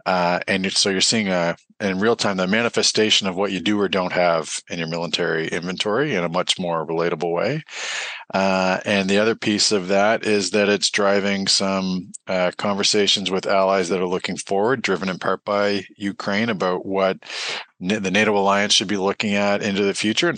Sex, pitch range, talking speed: male, 95-105 Hz, 190 wpm